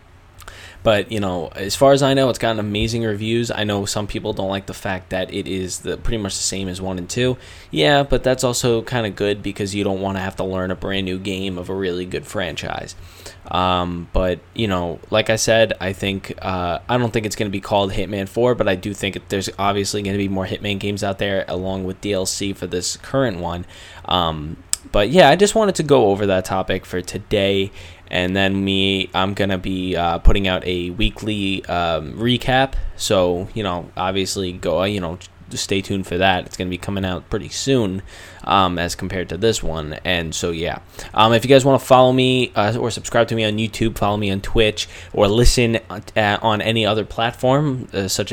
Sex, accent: male, American